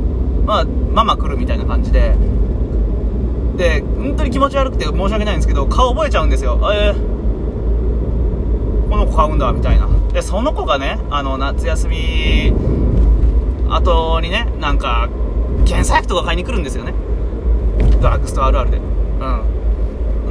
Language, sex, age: Japanese, male, 20-39